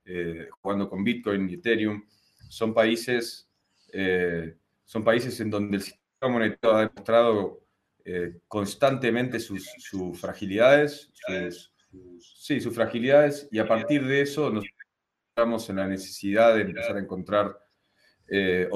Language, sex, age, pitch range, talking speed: Spanish, male, 30-49, 100-120 Hz, 135 wpm